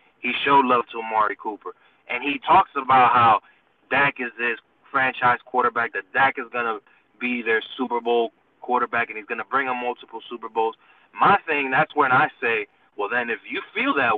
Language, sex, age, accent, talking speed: English, male, 20-39, American, 190 wpm